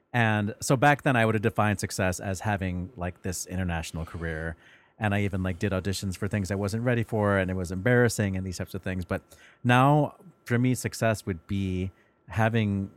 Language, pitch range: English, 90-110 Hz